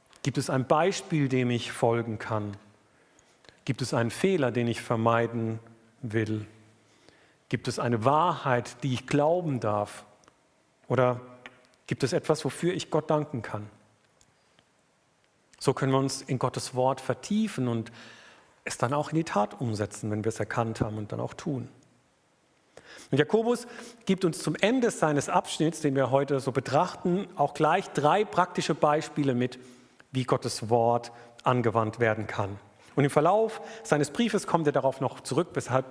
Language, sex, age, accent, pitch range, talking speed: German, male, 50-69, German, 125-175 Hz, 155 wpm